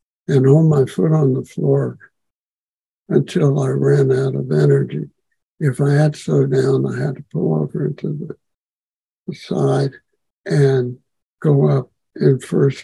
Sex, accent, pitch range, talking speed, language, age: male, American, 125-155 Hz, 145 wpm, English, 60-79